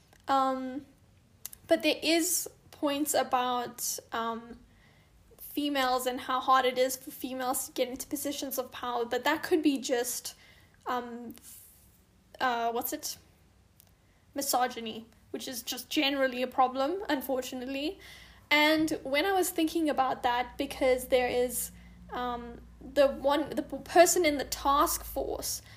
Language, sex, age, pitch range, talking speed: English, female, 10-29, 255-295 Hz, 135 wpm